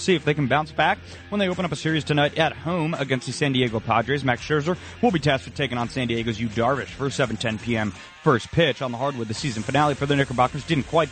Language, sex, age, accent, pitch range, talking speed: English, male, 30-49, American, 120-150 Hz, 260 wpm